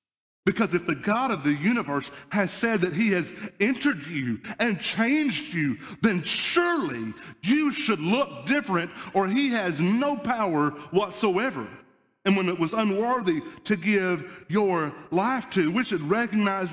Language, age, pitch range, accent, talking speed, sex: English, 40-59, 130-195 Hz, American, 150 wpm, male